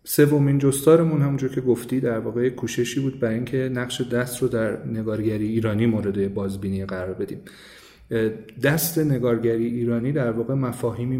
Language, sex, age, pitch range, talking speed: Persian, male, 40-59, 110-130 Hz, 145 wpm